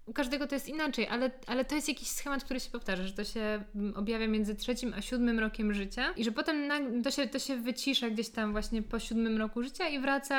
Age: 20-39